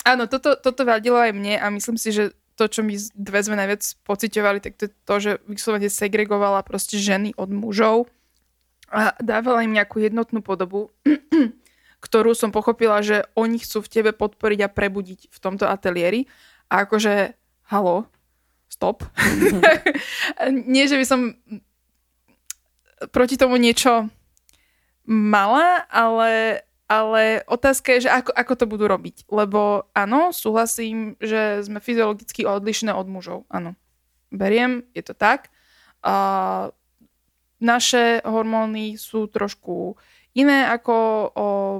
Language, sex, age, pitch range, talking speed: Slovak, female, 20-39, 200-235 Hz, 130 wpm